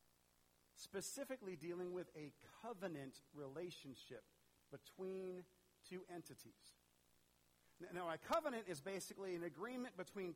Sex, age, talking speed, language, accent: male, 50-69, 105 wpm, English, American